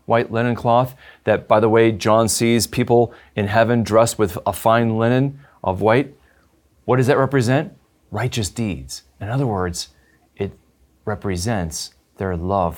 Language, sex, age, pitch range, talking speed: English, male, 40-59, 85-115 Hz, 150 wpm